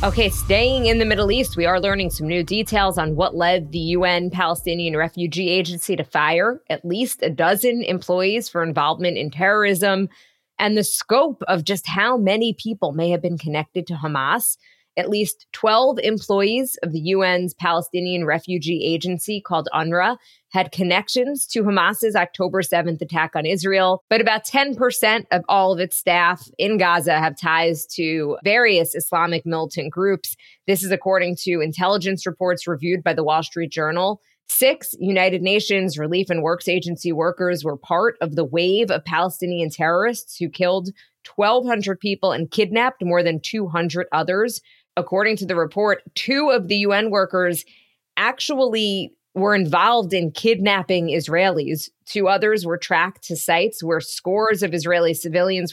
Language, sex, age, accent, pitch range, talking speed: English, female, 20-39, American, 170-210 Hz, 160 wpm